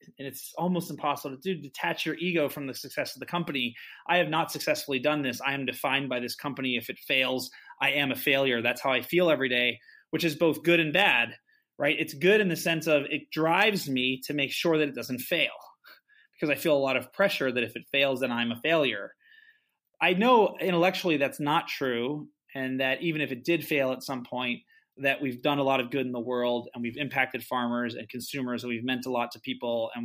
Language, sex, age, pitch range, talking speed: English, male, 30-49, 130-165 Hz, 235 wpm